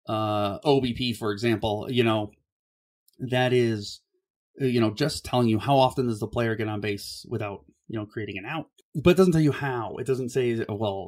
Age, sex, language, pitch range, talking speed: 30-49, male, English, 105-130 Hz, 200 wpm